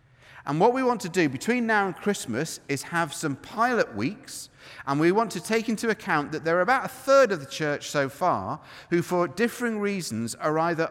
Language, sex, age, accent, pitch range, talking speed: English, male, 40-59, British, 135-185 Hz, 215 wpm